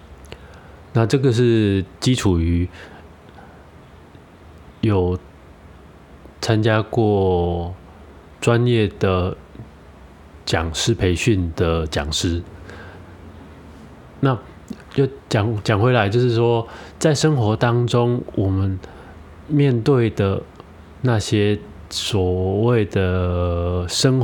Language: Chinese